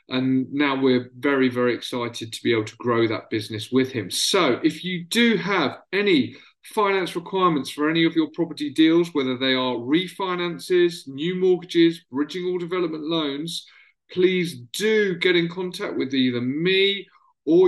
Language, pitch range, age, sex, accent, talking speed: English, 135-195 Hz, 40-59, male, British, 165 wpm